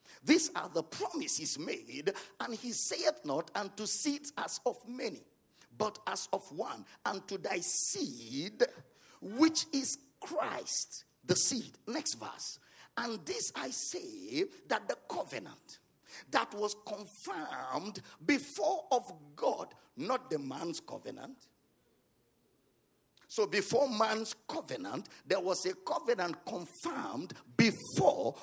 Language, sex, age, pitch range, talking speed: English, male, 50-69, 210-310 Hz, 120 wpm